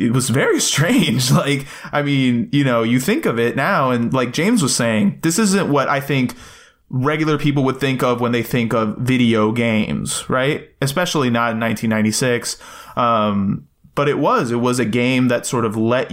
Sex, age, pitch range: male, 20-39, 115-135 Hz